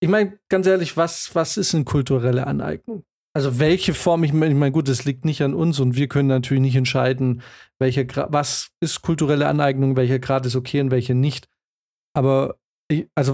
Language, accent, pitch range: German, German, 135-170 Hz